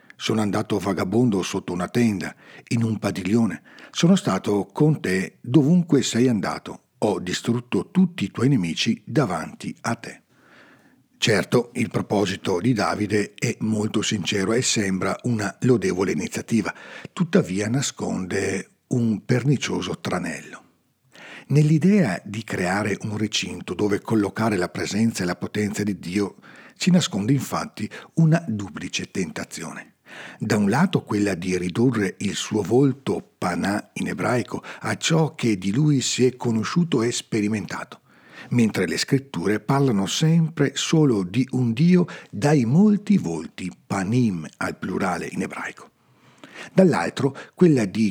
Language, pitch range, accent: Italian, 100-145 Hz, native